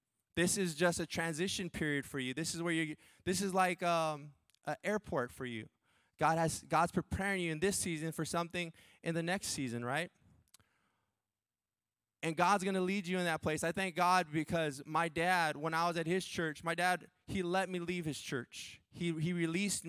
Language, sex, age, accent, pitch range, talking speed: English, male, 20-39, American, 145-180 Hz, 200 wpm